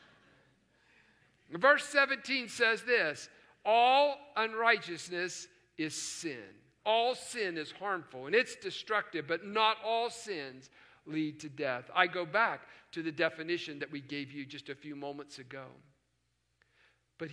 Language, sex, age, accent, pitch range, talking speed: English, male, 50-69, American, 165-255 Hz, 130 wpm